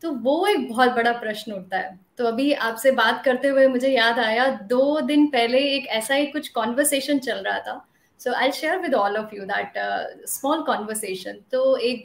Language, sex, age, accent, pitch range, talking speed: Hindi, female, 20-39, native, 230-290 Hz, 160 wpm